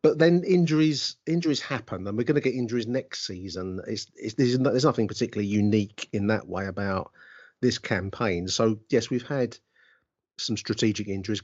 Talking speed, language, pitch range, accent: 180 wpm, English, 100-130 Hz, British